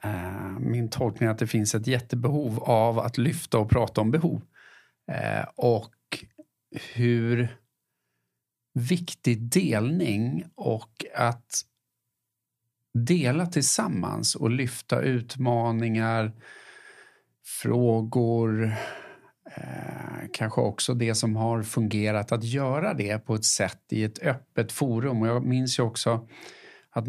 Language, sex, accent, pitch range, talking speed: Swedish, male, Norwegian, 110-125 Hz, 115 wpm